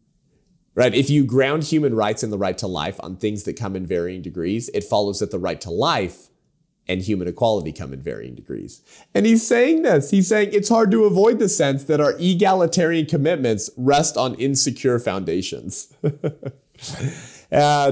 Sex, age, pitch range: male, 30-49, 95-145 Hz